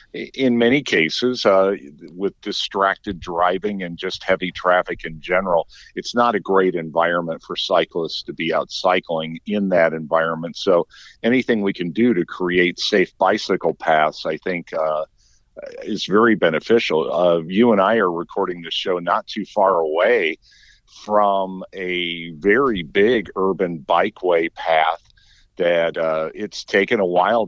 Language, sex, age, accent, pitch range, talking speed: English, male, 50-69, American, 85-105 Hz, 150 wpm